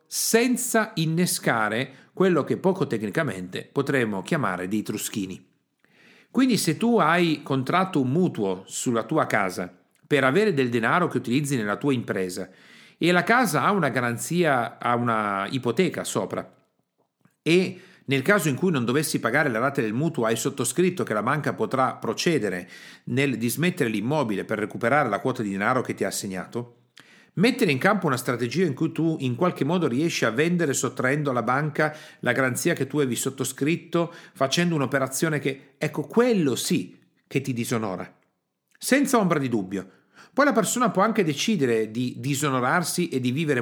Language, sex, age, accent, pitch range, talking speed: Italian, male, 40-59, native, 120-170 Hz, 160 wpm